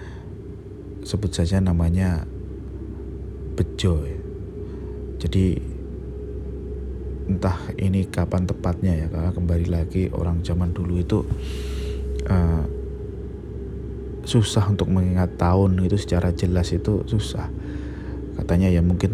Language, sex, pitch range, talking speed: Indonesian, male, 80-100 Hz, 90 wpm